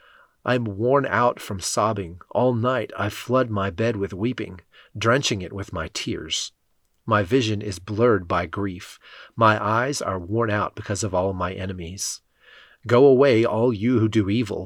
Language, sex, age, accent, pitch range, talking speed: English, male, 40-59, American, 100-120 Hz, 170 wpm